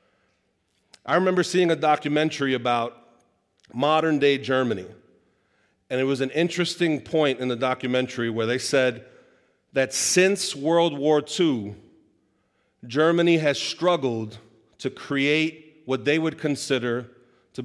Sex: male